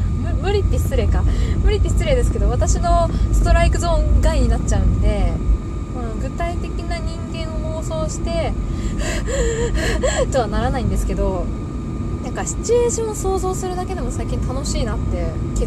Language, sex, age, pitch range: Japanese, female, 20-39, 80-95 Hz